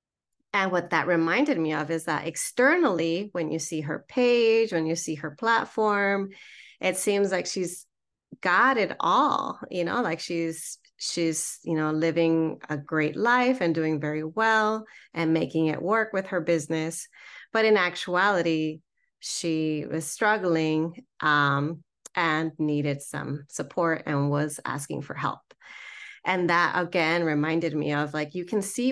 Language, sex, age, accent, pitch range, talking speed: English, female, 30-49, American, 160-215 Hz, 155 wpm